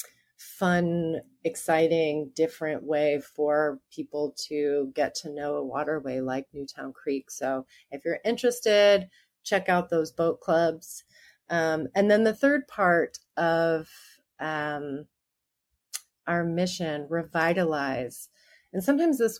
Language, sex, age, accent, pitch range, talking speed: English, female, 30-49, American, 150-175 Hz, 120 wpm